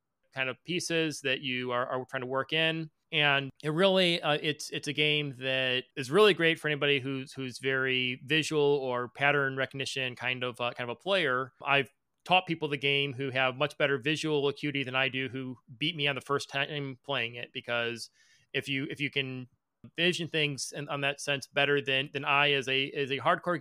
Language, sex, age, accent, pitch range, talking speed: English, male, 30-49, American, 130-150 Hz, 210 wpm